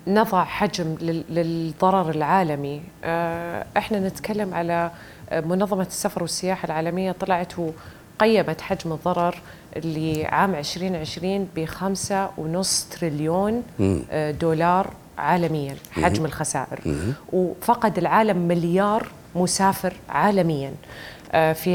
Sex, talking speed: female, 85 wpm